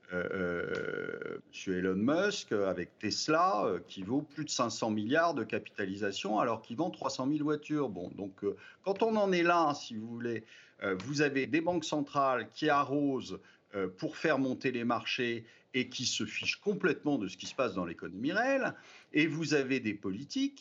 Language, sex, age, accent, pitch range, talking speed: French, male, 50-69, French, 110-160 Hz, 195 wpm